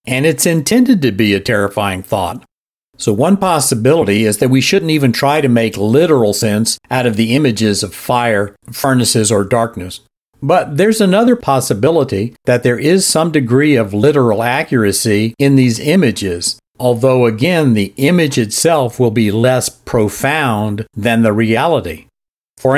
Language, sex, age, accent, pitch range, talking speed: English, male, 50-69, American, 110-145 Hz, 155 wpm